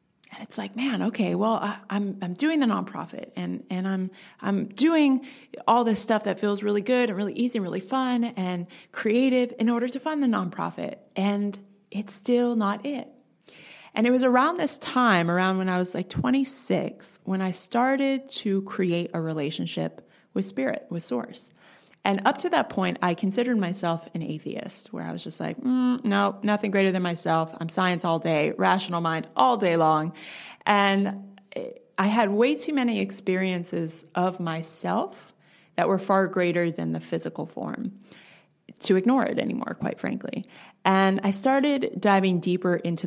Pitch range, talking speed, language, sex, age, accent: 175-240 Hz, 175 wpm, English, female, 20-39, American